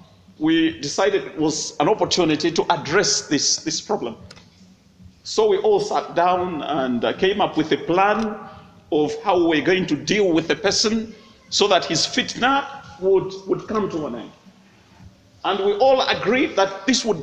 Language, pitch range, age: English, 195-260 Hz, 50-69